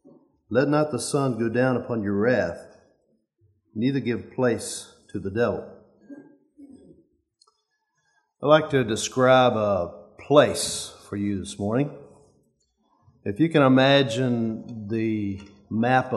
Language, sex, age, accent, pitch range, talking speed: English, male, 50-69, American, 105-140 Hz, 115 wpm